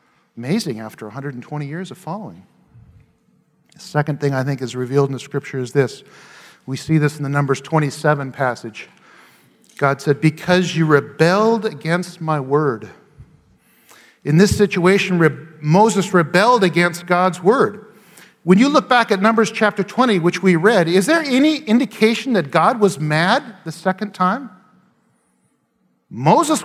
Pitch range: 160-215 Hz